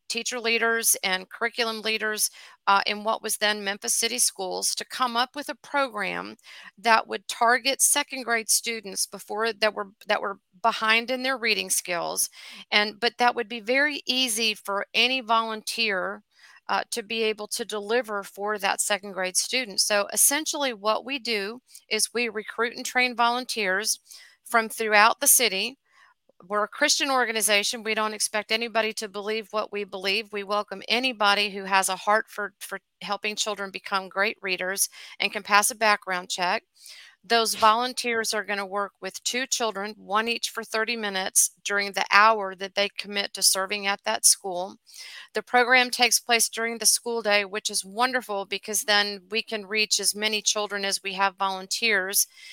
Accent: American